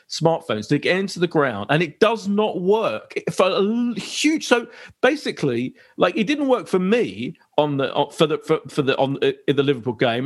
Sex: male